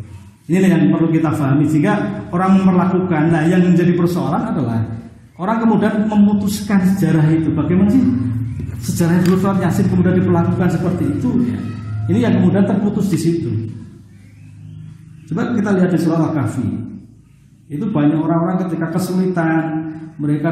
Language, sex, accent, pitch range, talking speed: Indonesian, male, native, 135-165 Hz, 135 wpm